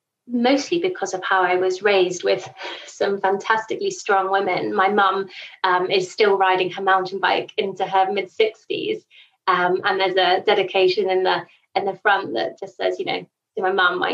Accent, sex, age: British, female, 20-39